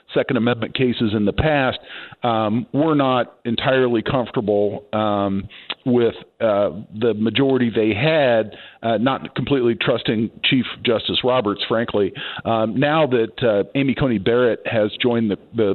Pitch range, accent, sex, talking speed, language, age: 110-130 Hz, American, male, 140 wpm, English, 50-69